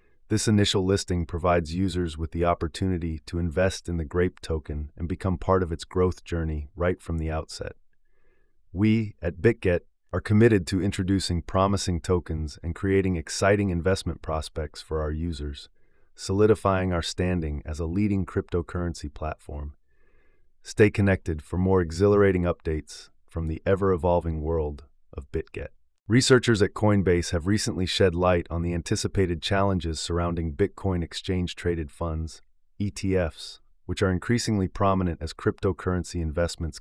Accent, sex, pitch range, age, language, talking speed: American, male, 80-95 Hz, 30-49, English, 140 wpm